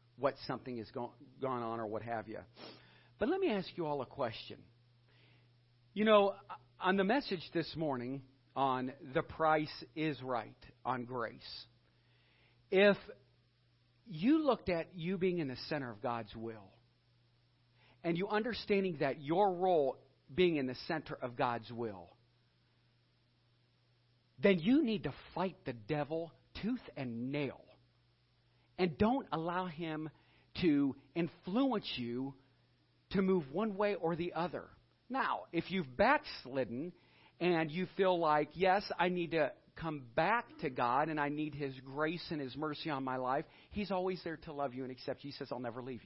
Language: English